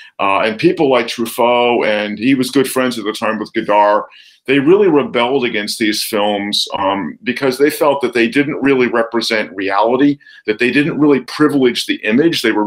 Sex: male